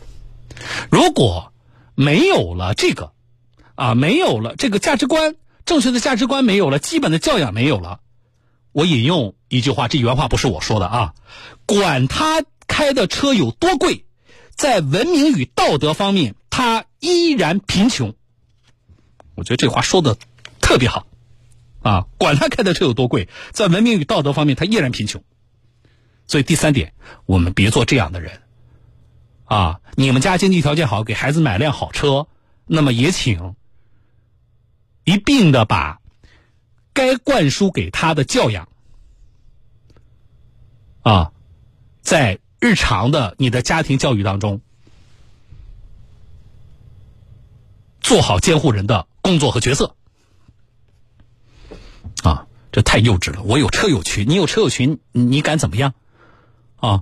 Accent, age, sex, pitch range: native, 50-69, male, 110-150 Hz